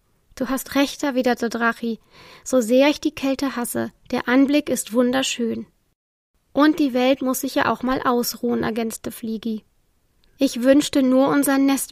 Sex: female